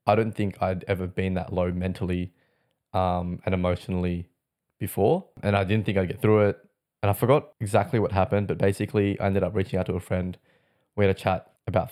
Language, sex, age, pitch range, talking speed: English, male, 20-39, 95-105 Hz, 210 wpm